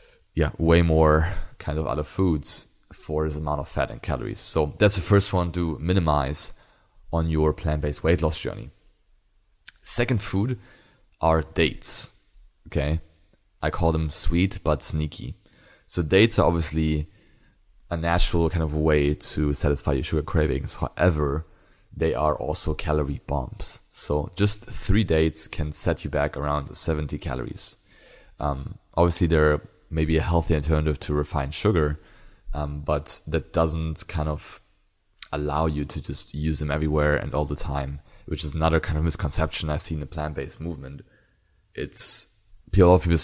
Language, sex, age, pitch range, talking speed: English, male, 20-39, 75-90 Hz, 160 wpm